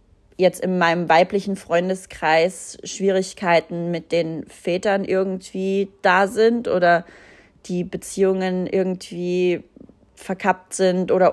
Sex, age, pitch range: female, 30-49, 165-195 Hz